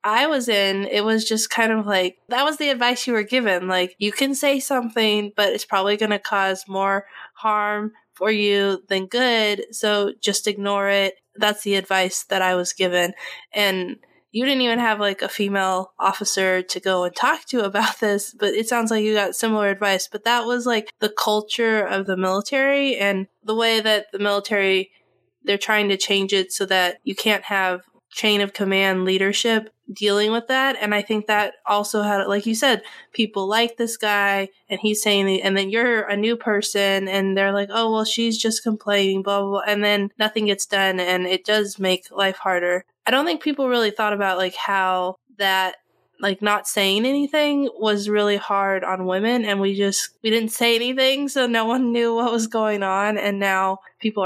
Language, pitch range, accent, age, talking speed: English, 195-225 Hz, American, 20-39, 200 wpm